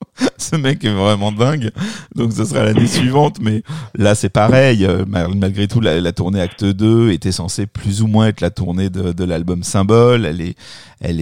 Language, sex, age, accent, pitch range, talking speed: French, male, 50-69, French, 90-115 Hz, 195 wpm